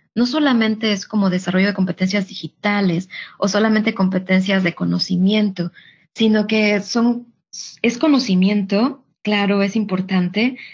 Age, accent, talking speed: 20-39, Mexican, 115 wpm